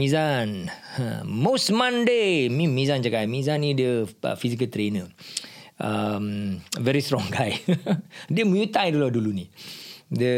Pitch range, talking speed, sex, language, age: 120-165 Hz, 120 wpm, male, Malay, 40-59